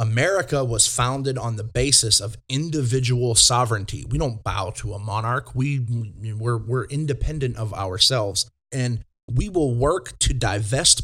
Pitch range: 110-130 Hz